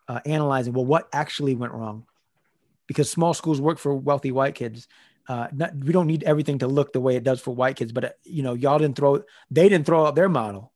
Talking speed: 235 wpm